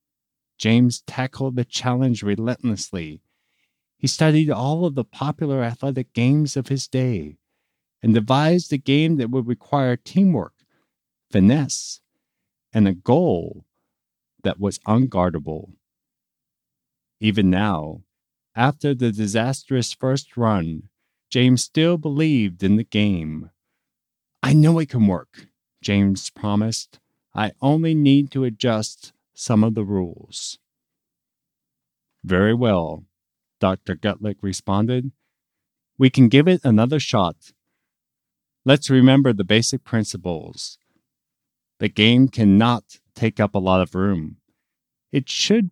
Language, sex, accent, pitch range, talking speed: English, male, American, 100-140 Hz, 115 wpm